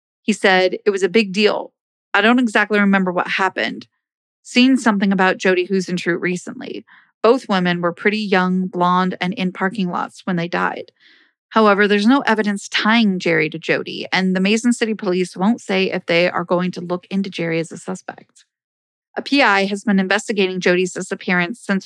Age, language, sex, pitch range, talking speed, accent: 30-49, English, female, 180-215 Hz, 185 wpm, American